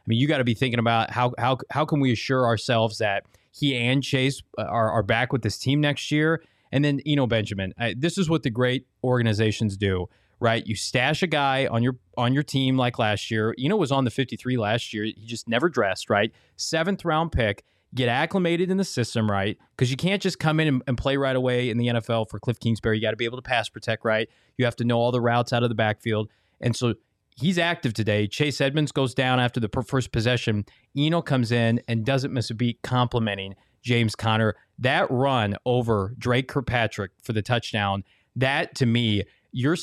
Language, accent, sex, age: English, American, male, 20-39